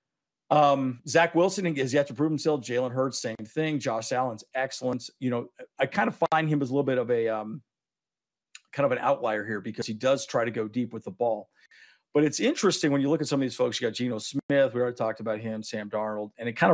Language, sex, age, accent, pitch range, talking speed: English, male, 40-59, American, 120-155 Hz, 245 wpm